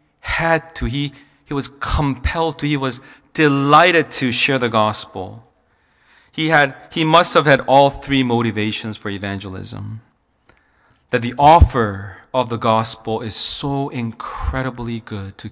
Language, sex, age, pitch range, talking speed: English, male, 40-59, 105-135 Hz, 140 wpm